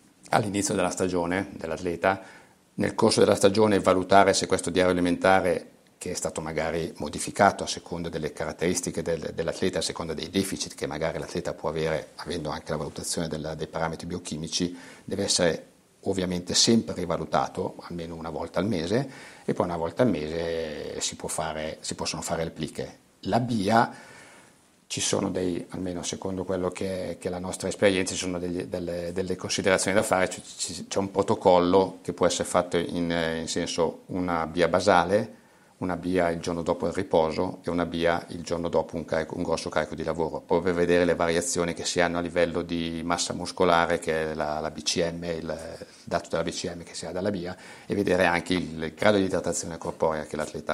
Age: 50-69